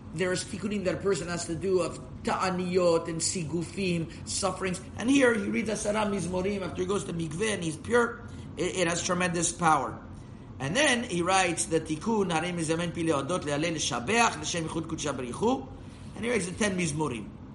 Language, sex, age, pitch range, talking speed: English, male, 50-69, 150-190 Hz, 150 wpm